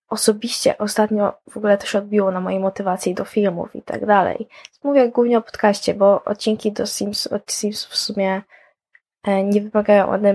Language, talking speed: Polish, 170 wpm